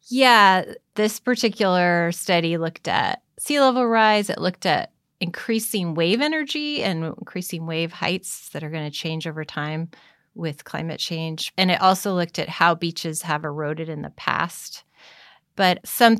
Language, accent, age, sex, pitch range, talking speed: English, American, 30-49, female, 160-190 Hz, 160 wpm